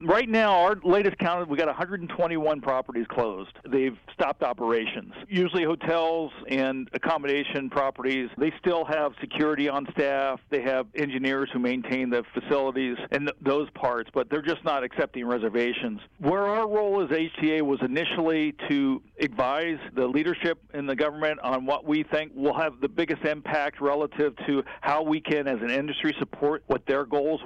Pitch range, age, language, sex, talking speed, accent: 135-160 Hz, 50-69, English, male, 165 wpm, American